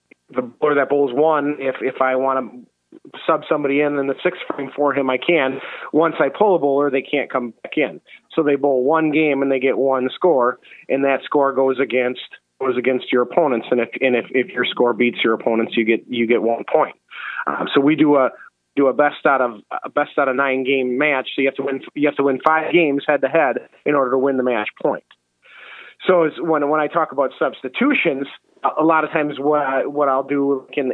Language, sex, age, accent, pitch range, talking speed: English, male, 30-49, American, 130-150 Hz, 235 wpm